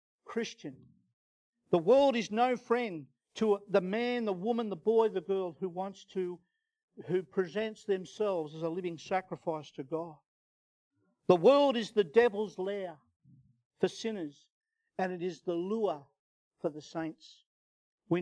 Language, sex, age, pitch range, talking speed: English, male, 50-69, 175-220 Hz, 145 wpm